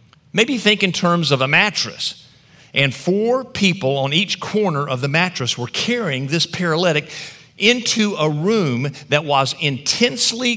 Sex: male